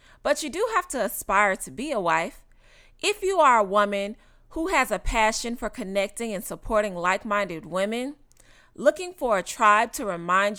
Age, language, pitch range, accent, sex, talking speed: 30-49, English, 195-260 Hz, American, female, 175 wpm